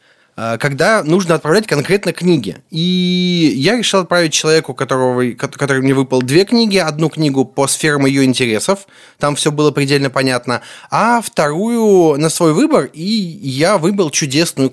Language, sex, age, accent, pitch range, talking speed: Russian, male, 20-39, native, 135-160 Hz, 145 wpm